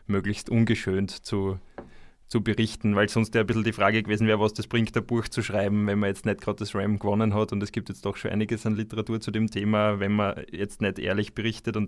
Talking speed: 250 wpm